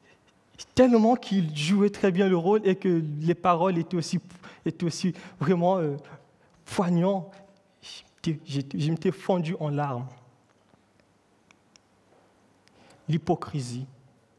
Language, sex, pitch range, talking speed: French, male, 160-215 Hz, 100 wpm